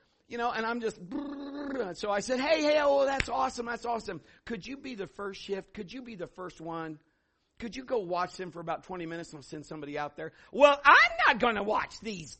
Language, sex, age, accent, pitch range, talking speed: English, male, 50-69, American, 150-205 Hz, 230 wpm